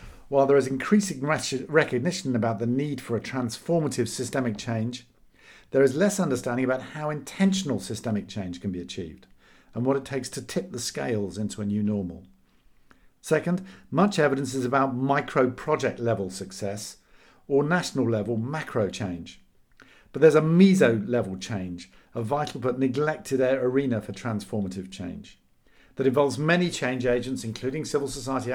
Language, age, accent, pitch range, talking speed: English, 50-69, British, 115-145 Hz, 155 wpm